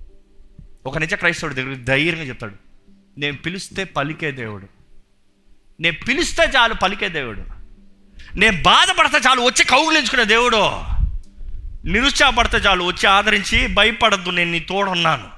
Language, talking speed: Telugu, 115 wpm